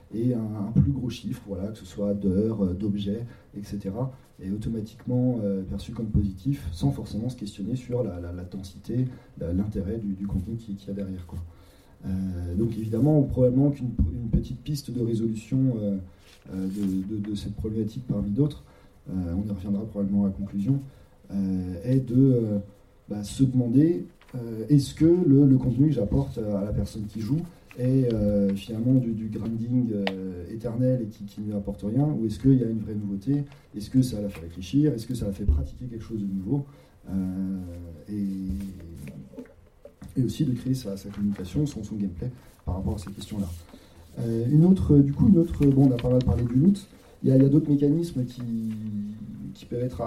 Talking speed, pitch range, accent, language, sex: 190 wpm, 100-130 Hz, French, French, male